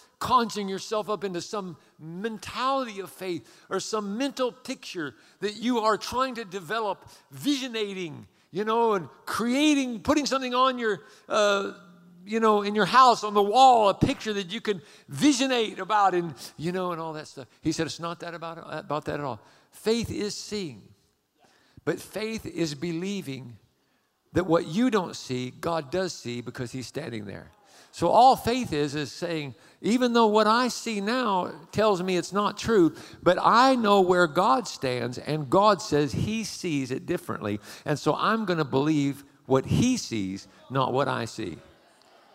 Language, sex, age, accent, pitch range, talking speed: English, male, 50-69, American, 145-215 Hz, 175 wpm